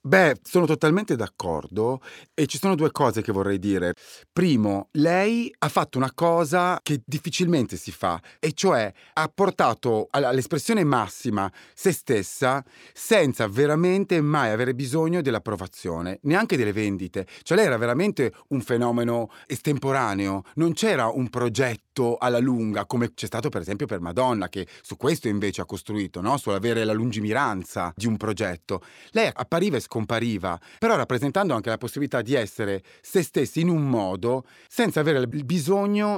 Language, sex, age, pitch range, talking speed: Italian, male, 30-49, 110-160 Hz, 155 wpm